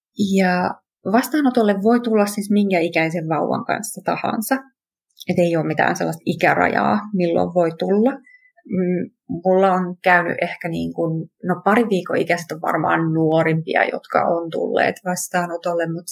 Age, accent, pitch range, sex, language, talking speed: 30-49, native, 170-210 Hz, female, Finnish, 140 wpm